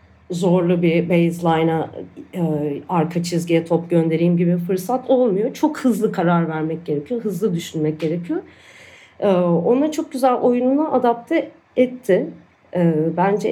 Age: 40-59